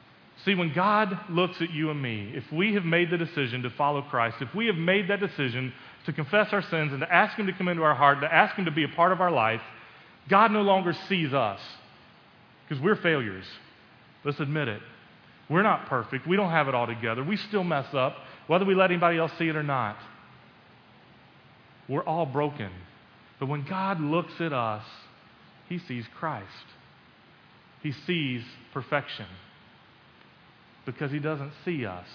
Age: 40-59